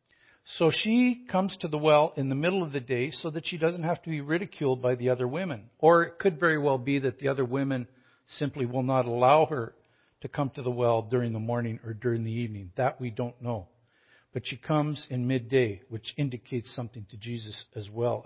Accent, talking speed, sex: American, 220 wpm, male